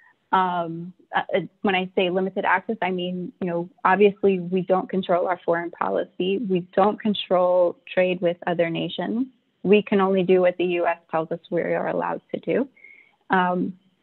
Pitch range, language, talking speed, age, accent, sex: 175-205 Hz, English, 170 wpm, 20-39, American, female